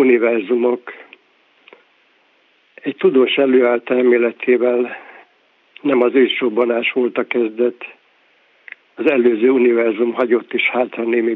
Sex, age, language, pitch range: male, 60-79, Hungarian, 115-125 Hz